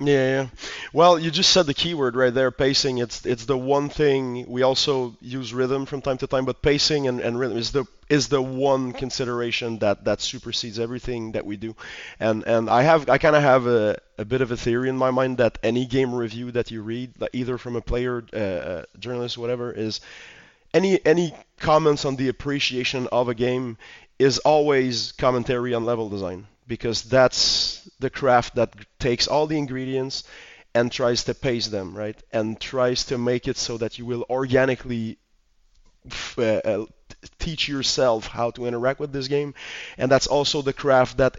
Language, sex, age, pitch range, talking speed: English, male, 20-39, 115-135 Hz, 190 wpm